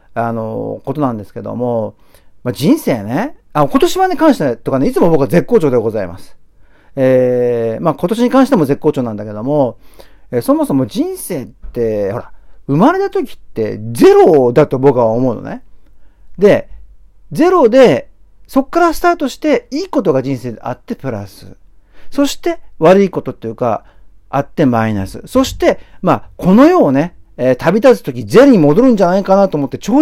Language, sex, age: Japanese, male, 50-69